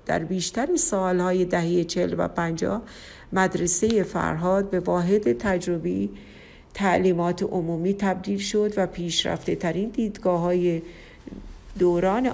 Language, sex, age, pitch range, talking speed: Persian, female, 50-69, 170-200 Hz, 105 wpm